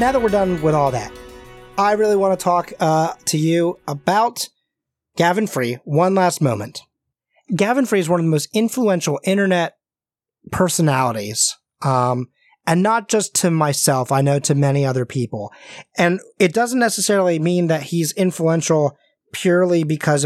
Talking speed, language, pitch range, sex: 155 wpm, English, 140-180 Hz, male